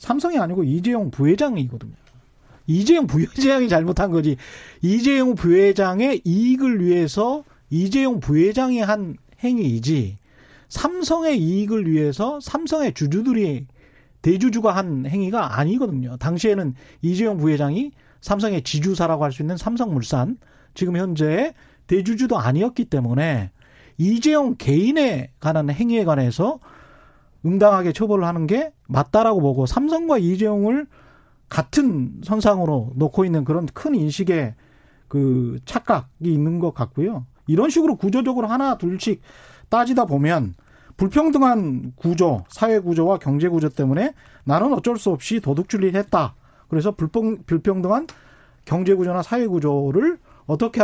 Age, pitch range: 30-49, 145-230 Hz